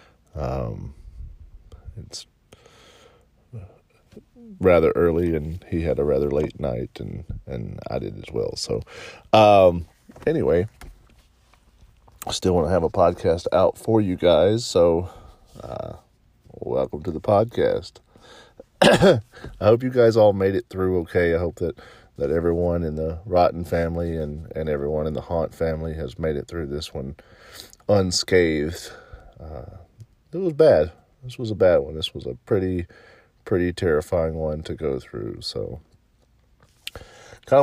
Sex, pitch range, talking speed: male, 80-105 Hz, 145 wpm